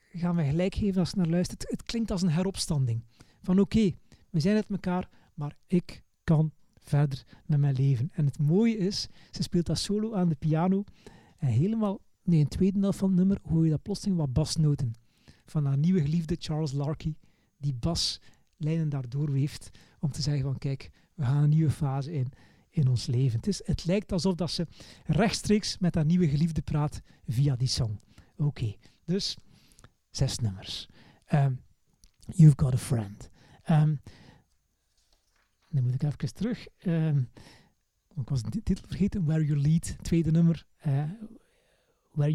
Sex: male